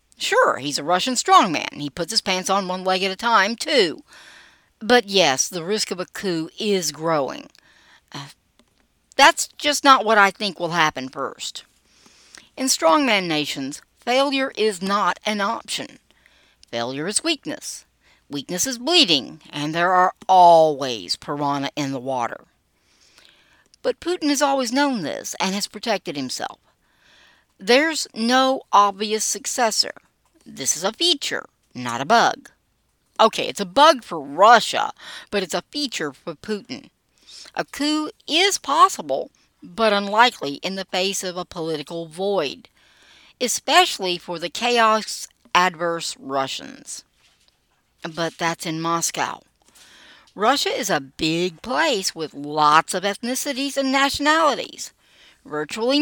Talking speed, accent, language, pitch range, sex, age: 135 wpm, American, English, 165-265 Hz, female, 60-79